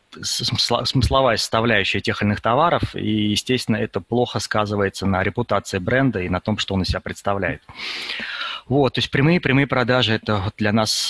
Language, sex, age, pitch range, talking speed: Russian, male, 20-39, 105-130 Hz, 170 wpm